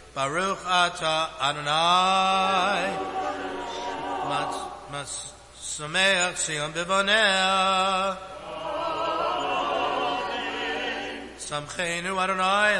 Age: 60-79